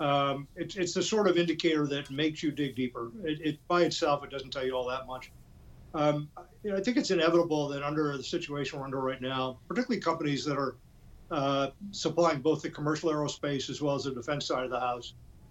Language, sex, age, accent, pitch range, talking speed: English, male, 50-69, American, 135-170 Hz, 220 wpm